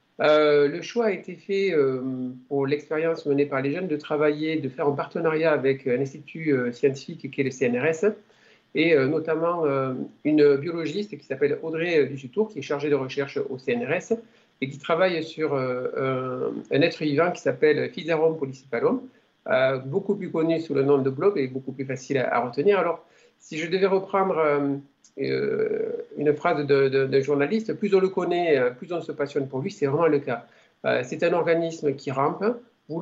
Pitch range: 140-185 Hz